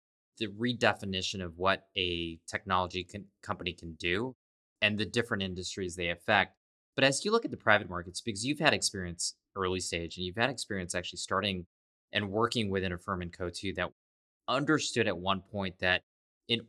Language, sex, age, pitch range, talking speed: English, male, 20-39, 90-105 Hz, 180 wpm